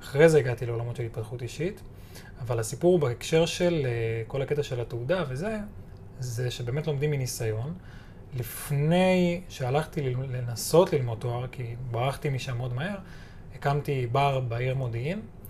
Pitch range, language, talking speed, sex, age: 120-145 Hz, Hebrew, 130 wpm, male, 20-39